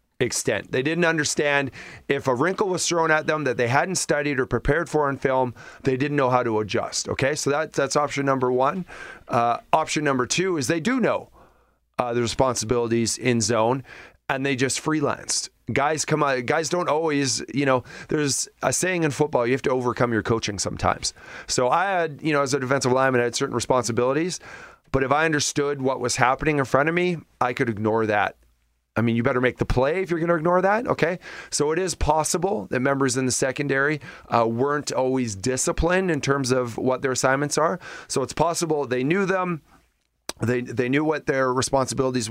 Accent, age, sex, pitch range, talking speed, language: American, 30-49, male, 125-150 Hz, 200 wpm, English